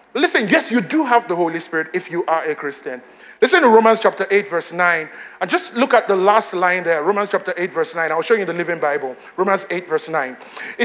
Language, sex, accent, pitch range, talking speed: English, male, Nigerian, 215-315 Hz, 240 wpm